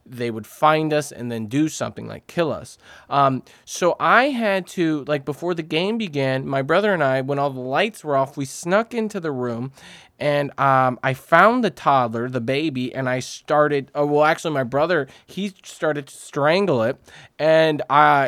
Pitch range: 135-175 Hz